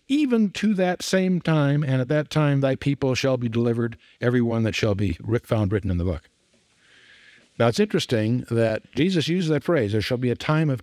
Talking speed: 210 wpm